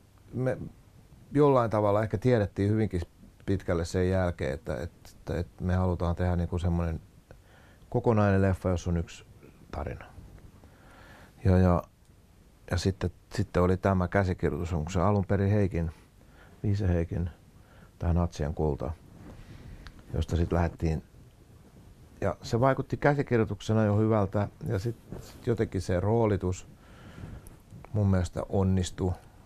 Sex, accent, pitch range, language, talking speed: male, native, 85-105 Hz, Finnish, 120 wpm